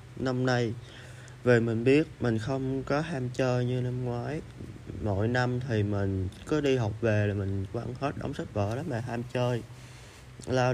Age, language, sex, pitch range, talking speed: 20-39, Vietnamese, male, 110-125 Hz, 185 wpm